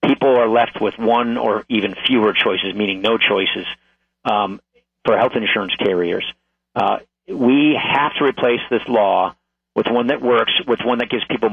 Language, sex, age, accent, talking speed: English, male, 40-59, American, 170 wpm